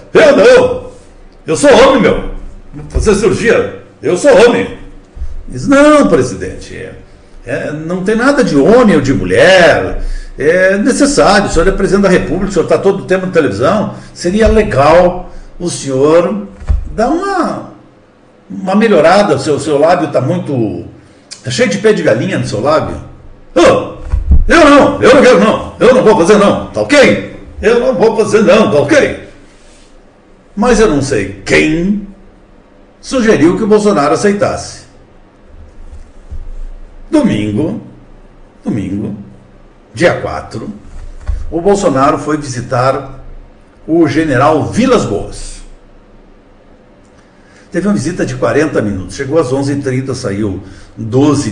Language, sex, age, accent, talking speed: Portuguese, male, 60-79, Brazilian, 135 wpm